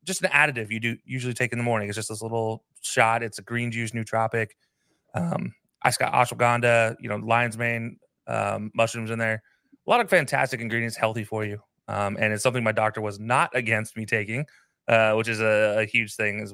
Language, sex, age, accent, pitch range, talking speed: English, male, 30-49, American, 110-125 Hz, 220 wpm